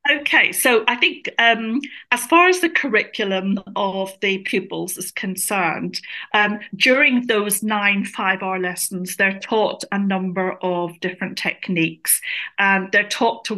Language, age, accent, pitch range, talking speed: English, 40-59, British, 180-215 Hz, 145 wpm